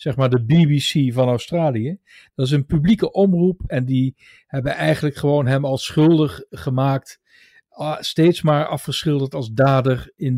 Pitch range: 130-170 Hz